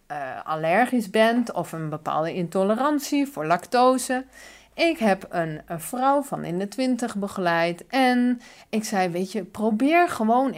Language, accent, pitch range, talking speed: Dutch, Dutch, 165-245 Hz, 145 wpm